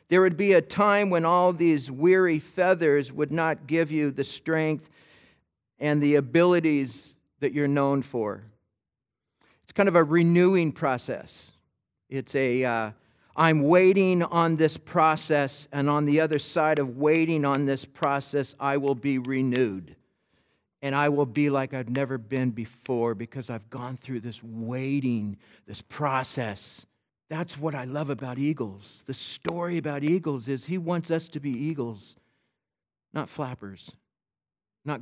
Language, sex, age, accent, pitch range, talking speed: English, male, 50-69, American, 135-175 Hz, 150 wpm